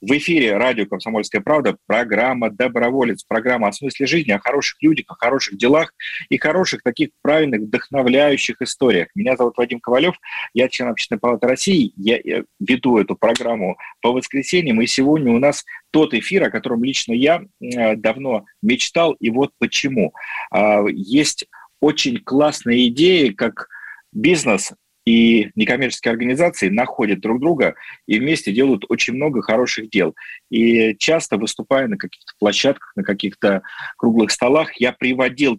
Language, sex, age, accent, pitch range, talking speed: Russian, male, 40-59, native, 115-155 Hz, 140 wpm